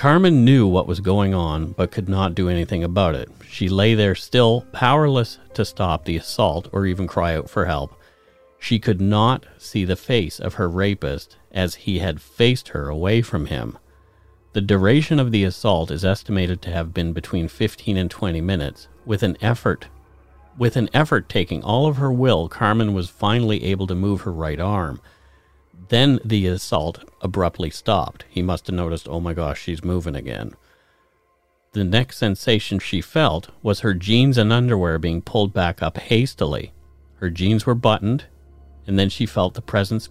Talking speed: 180 wpm